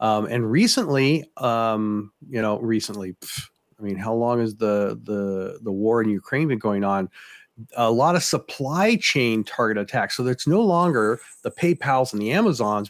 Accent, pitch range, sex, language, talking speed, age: American, 115-150 Hz, male, English, 175 wpm, 40-59